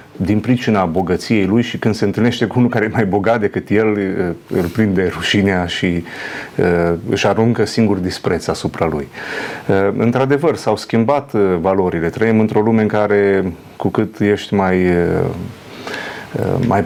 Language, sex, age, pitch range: Romanian, male, 30-49, 95-110 Hz